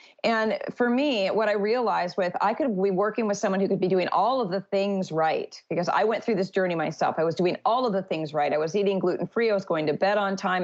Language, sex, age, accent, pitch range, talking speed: English, female, 40-59, American, 180-215 Hz, 270 wpm